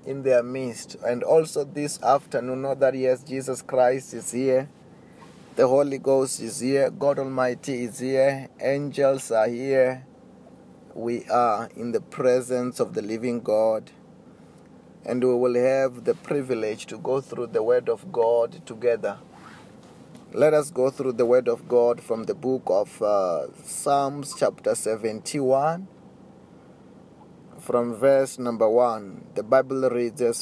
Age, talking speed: 30-49, 145 wpm